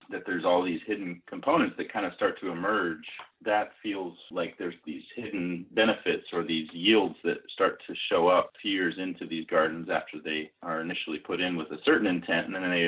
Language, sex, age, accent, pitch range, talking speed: English, male, 30-49, American, 85-105 Hz, 215 wpm